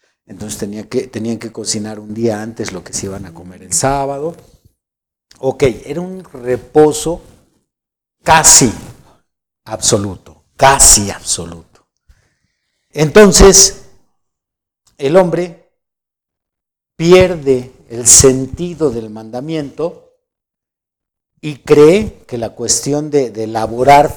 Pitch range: 115-160 Hz